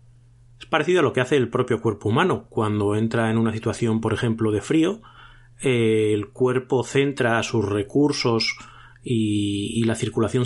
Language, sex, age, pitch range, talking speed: Spanish, male, 30-49, 110-130 Hz, 160 wpm